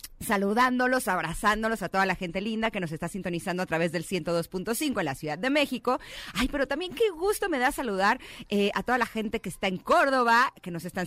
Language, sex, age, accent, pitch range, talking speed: Spanish, female, 30-49, Mexican, 180-250 Hz, 215 wpm